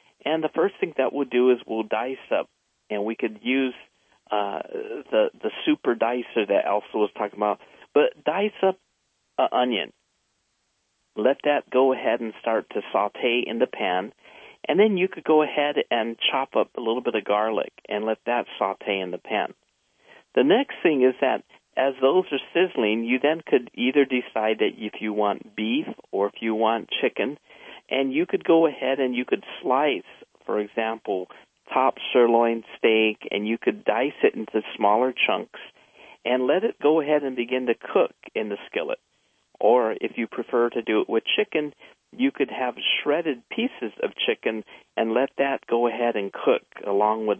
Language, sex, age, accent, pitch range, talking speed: English, male, 50-69, American, 110-155 Hz, 185 wpm